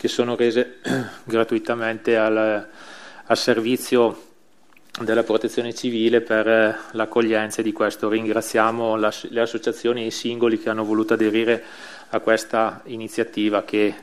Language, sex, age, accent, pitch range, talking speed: Italian, male, 30-49, native, 110-130 Hz, 120 wpm